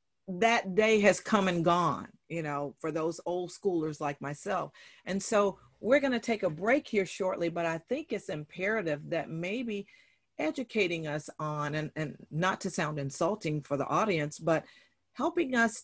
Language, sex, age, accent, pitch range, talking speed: English, female, 40-59, American, 150-200 Hz, 170 wpm